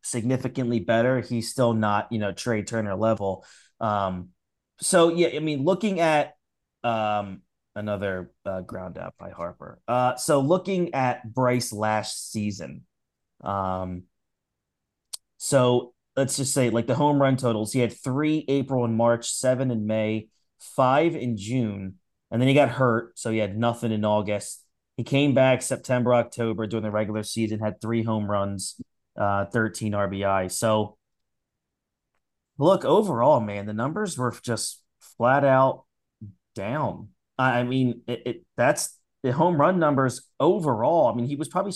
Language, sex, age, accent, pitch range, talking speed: English, male, 30-49, American, 105-130 Hz, 150 wpm